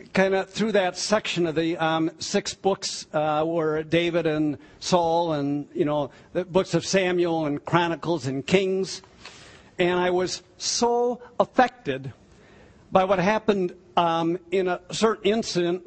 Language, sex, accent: English, male, American